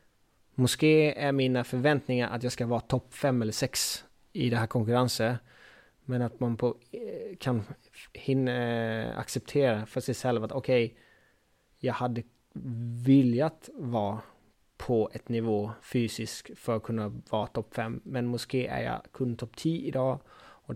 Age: 20-39